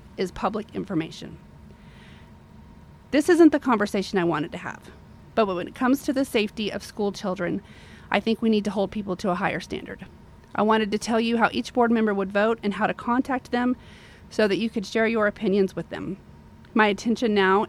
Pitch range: 200-235 Hz